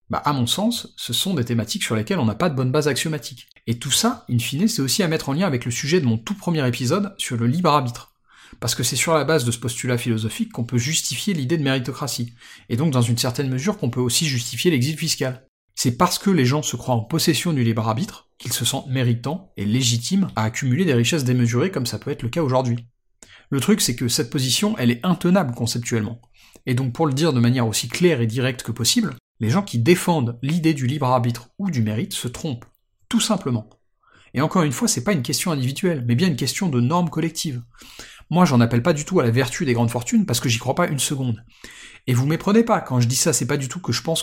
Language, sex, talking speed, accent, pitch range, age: French, male, 250 wpm, French, 120-160 Hz, 40-59